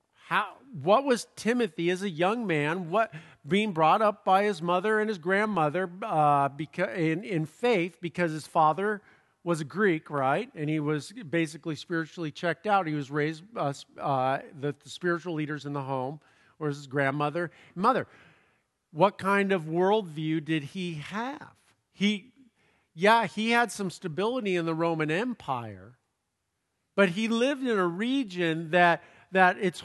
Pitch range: 155-200 Hz